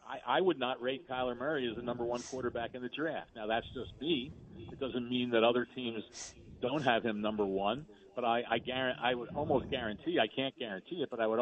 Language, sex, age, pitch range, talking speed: English, male, 50-69, 115-135 Hz, 230 wpm